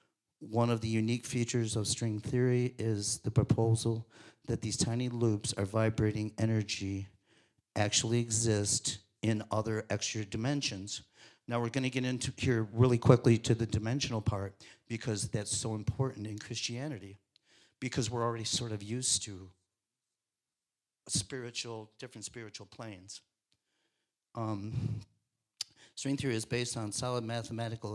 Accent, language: American, English